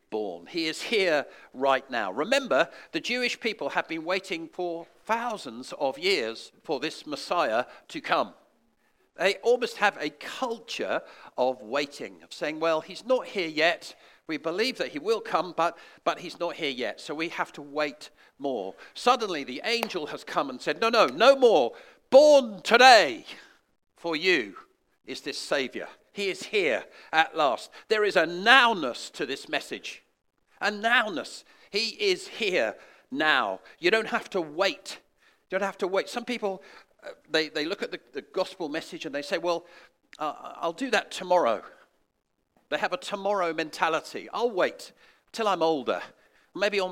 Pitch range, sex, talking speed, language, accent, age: 165-255 Hz, male, 170 wpm, English, British, 50-69